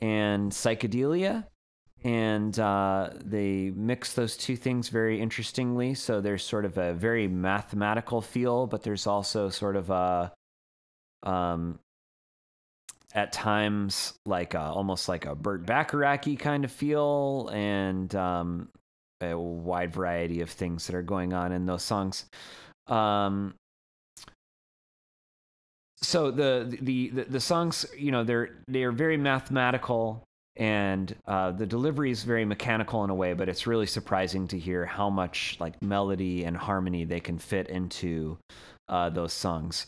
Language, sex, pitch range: English, male, 90-120 Hz